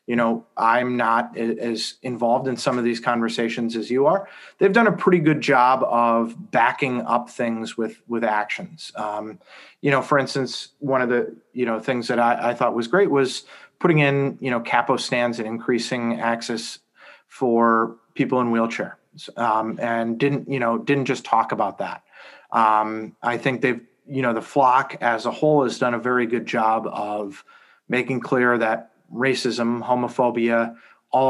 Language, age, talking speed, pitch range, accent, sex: English, 30-49, 175 wpm, 115-130 Hz, American, male